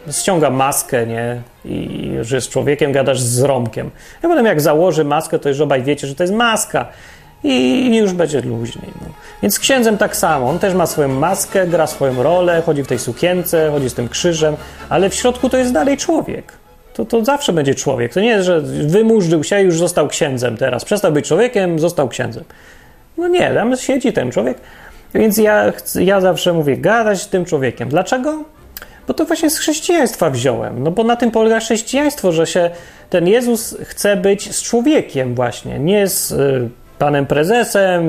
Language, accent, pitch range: Polish, native, 140-210 Hz